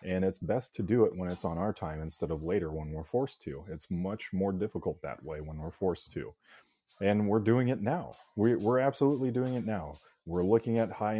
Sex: male